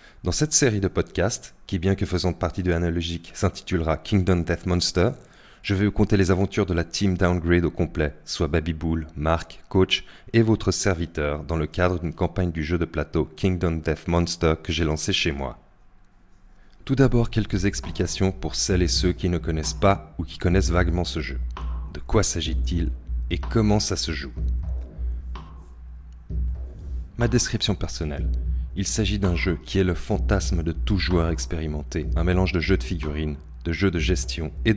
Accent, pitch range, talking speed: French, 75-95 Hz, 180 wpm